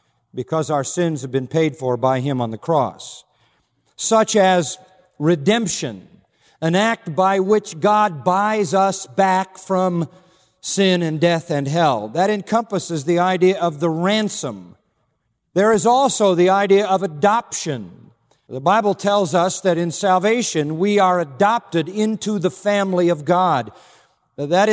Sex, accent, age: male, American, 50-69